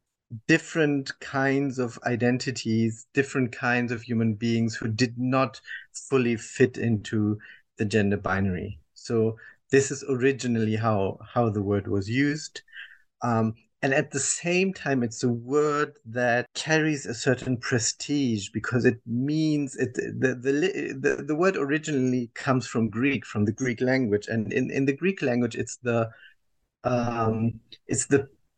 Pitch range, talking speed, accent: 110-135 Hz, 150 wpm, German